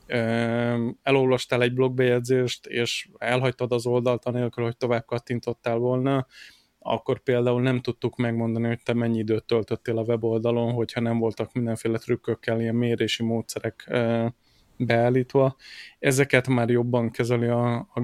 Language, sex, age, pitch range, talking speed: Hungarian, male, 20-39, 120-130 Hz, 130 wpm